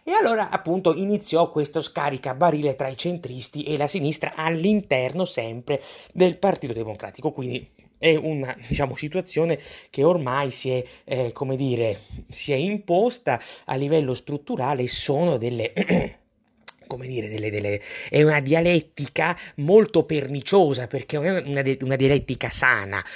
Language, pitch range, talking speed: Italian, 130-175 Hz, 130 wpm